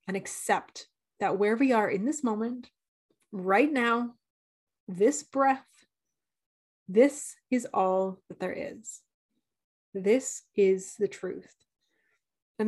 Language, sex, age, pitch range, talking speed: English, female, 30-49, 195-250 Hz, 115 wpm